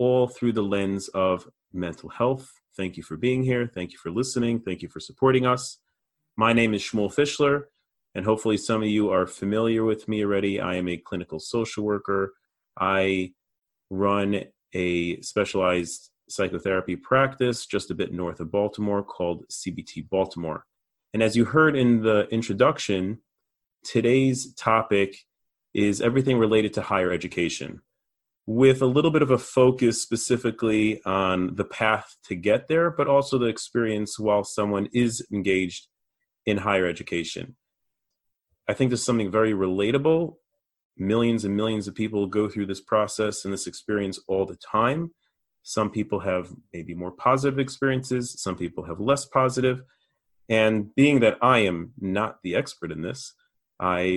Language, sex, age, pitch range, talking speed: English, male, 30-49, 95-125 Hz, 155 wpm